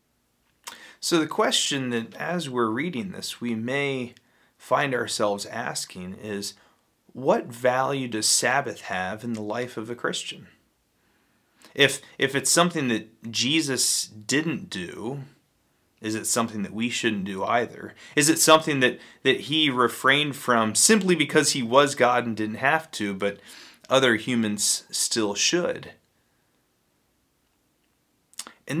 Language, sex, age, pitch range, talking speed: English, male, 30-49, 110-150 Hz, 135 wpm